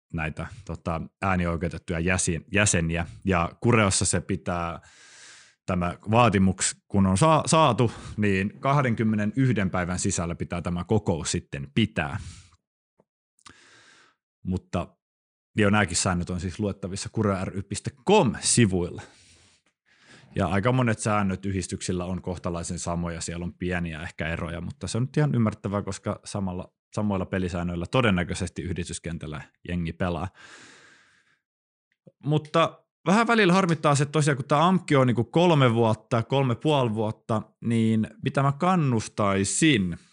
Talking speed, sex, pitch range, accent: 115 wpm, male, 90-125 Hz, native